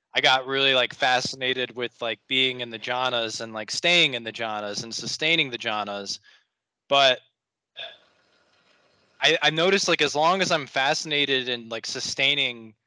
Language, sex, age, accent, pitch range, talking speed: English, male, 20-39, American, 120-150 Hz, 160 wpm